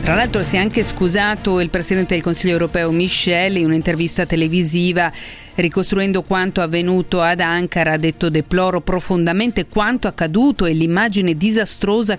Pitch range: 170-210 Hz